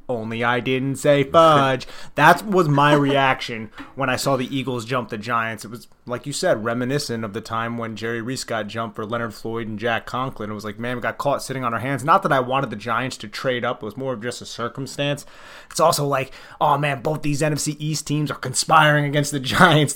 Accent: American